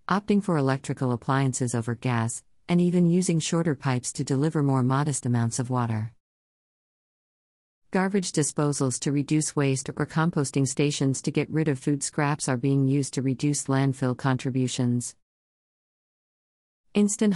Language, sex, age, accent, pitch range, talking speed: English, female, 50-69, American, 130-150 Hz, 140 wpm